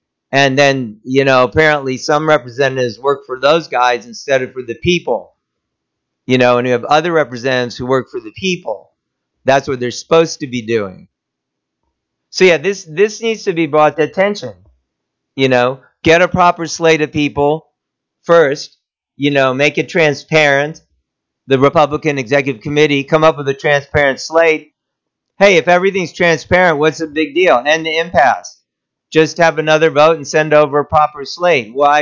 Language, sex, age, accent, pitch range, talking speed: English, male, 50-69, American, 135-160 Hz, 170 wpm